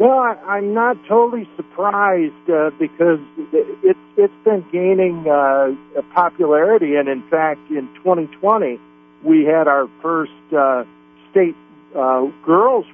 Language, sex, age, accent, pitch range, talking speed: English, male, 50-69, American, 130-165 Hz, 120 wpm